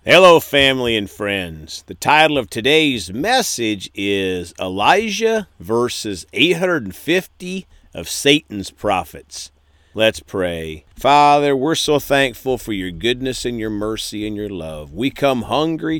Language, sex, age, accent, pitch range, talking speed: English, male, 50-69, American, 80-140 Hz, 130 wpm